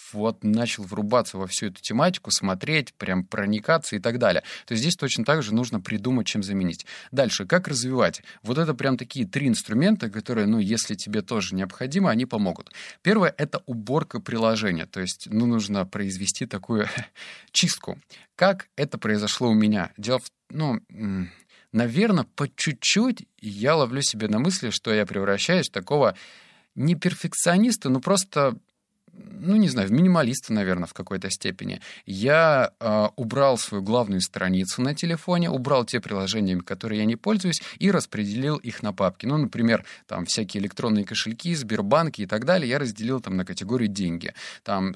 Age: 30-49